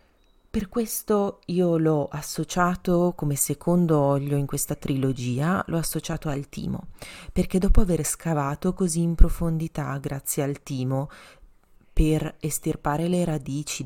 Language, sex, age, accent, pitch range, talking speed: Italian, female, 30-49, native, 135-165 Hz, 125 wpm